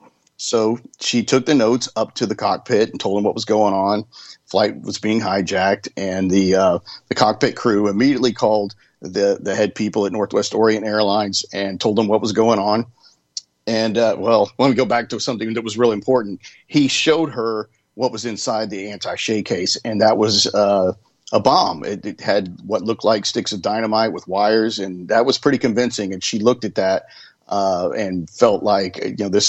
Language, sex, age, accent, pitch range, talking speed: English, male, 50-69, American, 100-115 Hz, 205 wpm